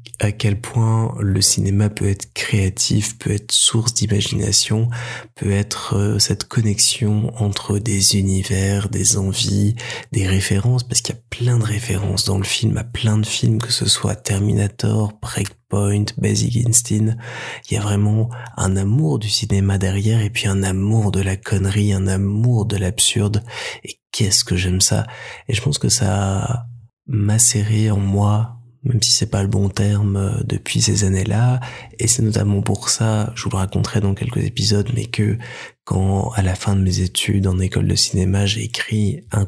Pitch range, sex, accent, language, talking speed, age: 100-115 Hz, male, French, French, 175 wpm, 20-39